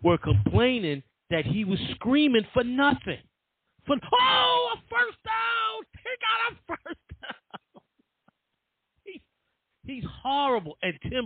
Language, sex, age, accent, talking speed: English, male, 40-59, American, 135 wpm